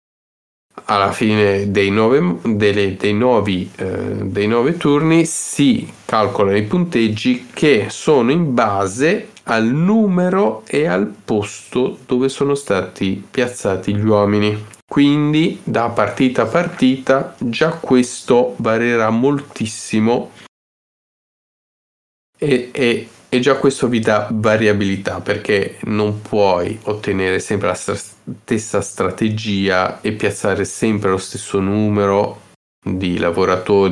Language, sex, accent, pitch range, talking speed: Italian, male, native, 100-130 Hz, 110 wpm